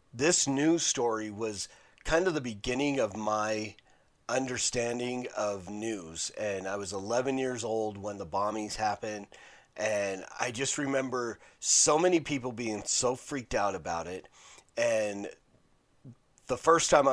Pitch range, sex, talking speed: 105-125 Hz, male, 140 wpm